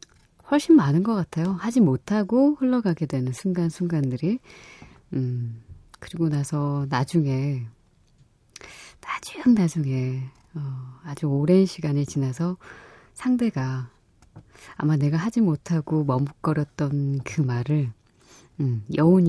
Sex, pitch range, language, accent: female, 135-180 Hz, Korean, native